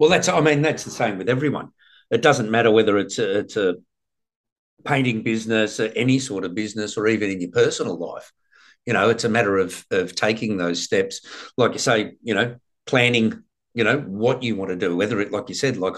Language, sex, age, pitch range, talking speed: English, male, 50-69, 105-150 Hz, 220 wpm